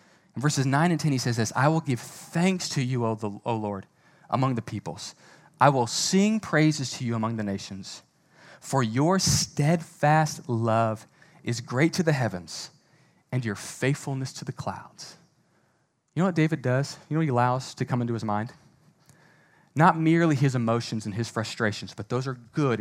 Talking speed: 180 wpm